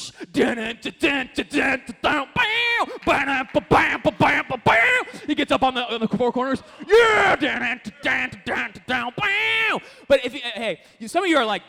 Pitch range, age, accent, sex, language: 230-305 Hz, 20-39, American, male, English